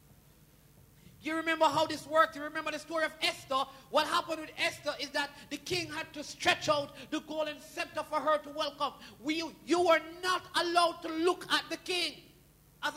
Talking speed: 190 wpm